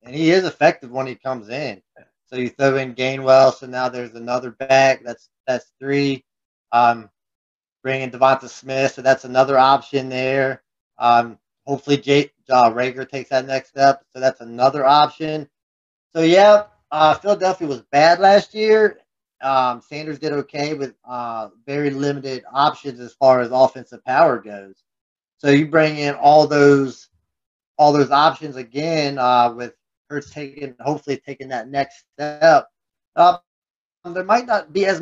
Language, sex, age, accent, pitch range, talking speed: English, male, 30-49, American, 120-150 Hz, 160 wpm